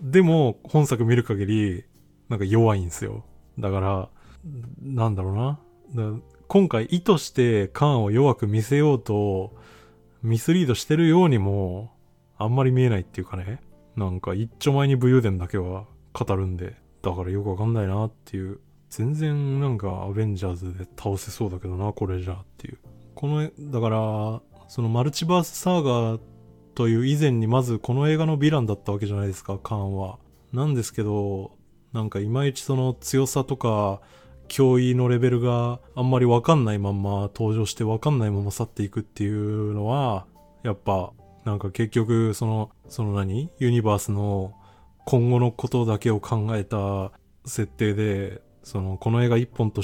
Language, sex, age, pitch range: Japanese, male, 20-39, 100-125 Hz